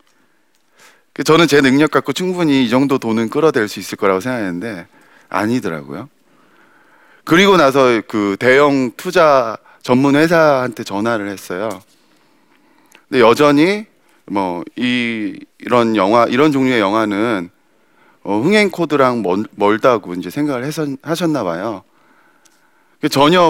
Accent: native